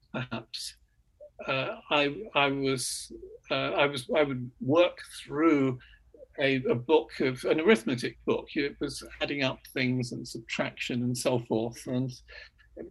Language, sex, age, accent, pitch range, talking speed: English, male, 50-69, British, 130-210 Hz, 140 wpm